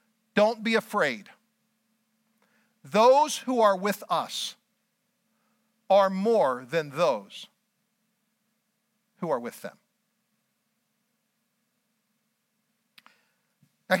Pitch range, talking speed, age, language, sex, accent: 205-230 Hz, 75 wpm, 50-69, English, male, American